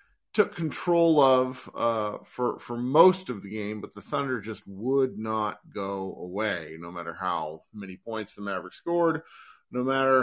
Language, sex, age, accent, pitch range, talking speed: English, male, 40-59, American, 95-130 Hz, 165 wpm